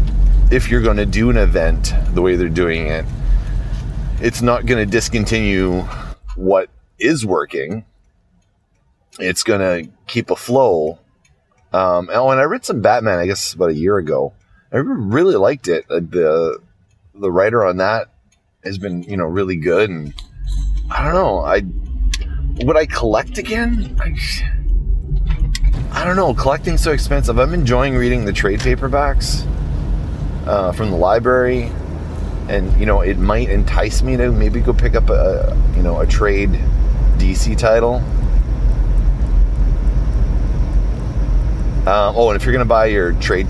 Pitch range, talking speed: 75-120 Hz, 150 wpm